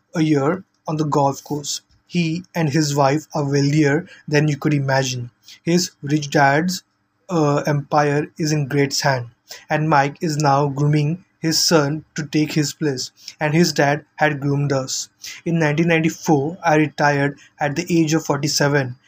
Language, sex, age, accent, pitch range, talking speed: English, male, 20-39, Indian, 145-160 Hz, 160 wpm